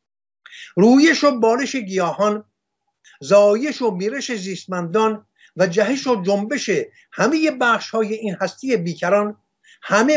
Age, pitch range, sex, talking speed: 50-69, 175-240 Hz, male, 105 wpm